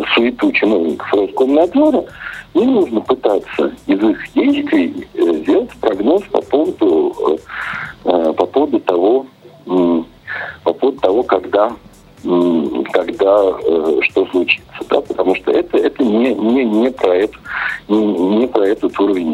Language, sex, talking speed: Russian, male, 115 wpm